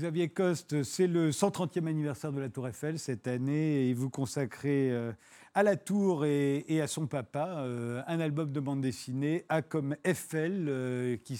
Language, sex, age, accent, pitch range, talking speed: French, male, 40-59, French, 130-160 Hz, 165 wpm